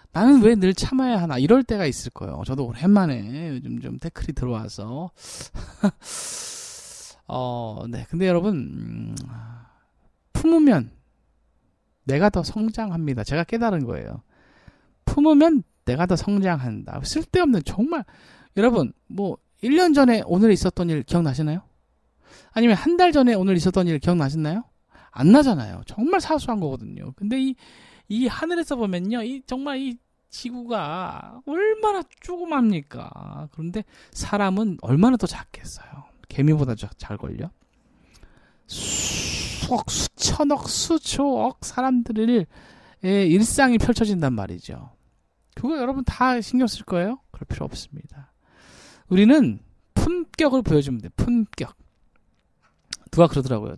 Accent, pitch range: native, 155-250 Hz